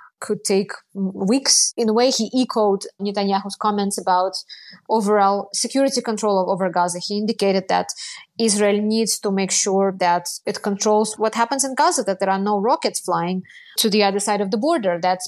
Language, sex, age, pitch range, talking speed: English, female, 20-39, 195-230 Hz, 175 wpm